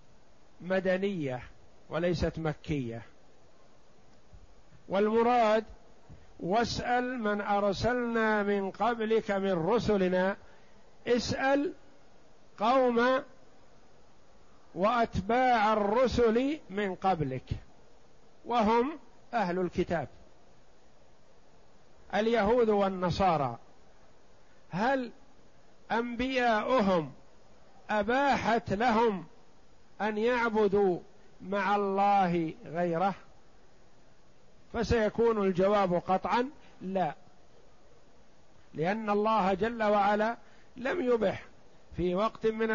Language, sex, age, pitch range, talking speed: Arabic, male, 50-69, 185-235 Hz, 60 wpm